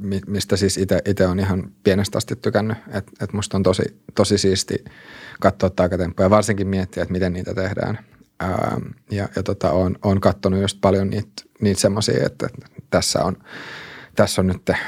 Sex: male